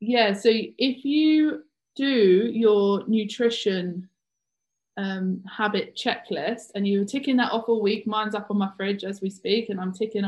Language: English